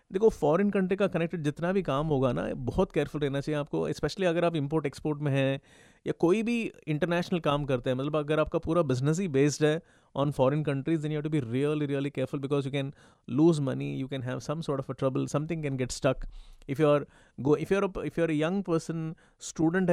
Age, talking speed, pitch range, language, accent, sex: 30-49, 225 wpm, 140-175 Hz, Hindi, native, male